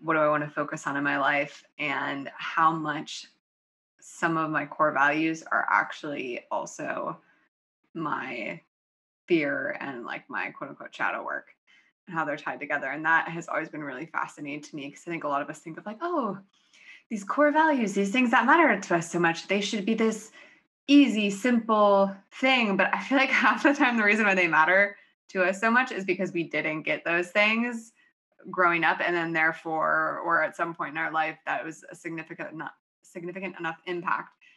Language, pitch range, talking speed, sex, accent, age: English, 160-225 Hz, 200 wpm, female, American, 20-39